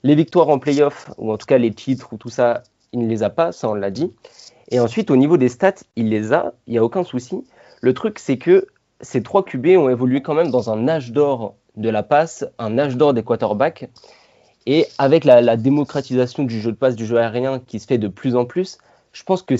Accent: French